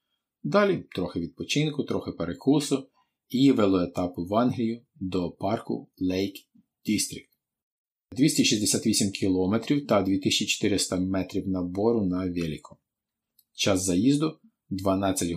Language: Ukrainian